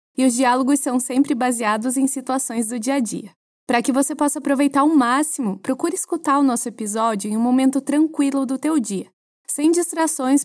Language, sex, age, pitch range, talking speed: Portuguese, female, 20-39, 240-280 Hz, 190 wpm